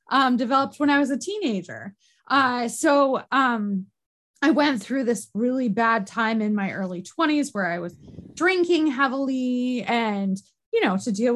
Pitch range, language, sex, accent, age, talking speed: 205-300 Hz, English, female, American, 20-39, 165 wpm